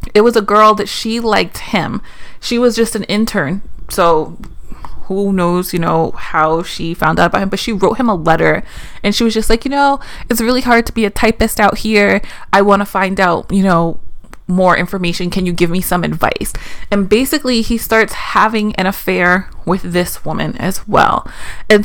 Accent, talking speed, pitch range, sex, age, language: American, 205 wpm, 180-225 Hz, female, 20-39, English